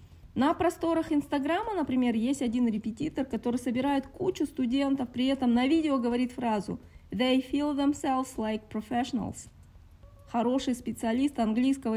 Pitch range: 225-280 Hz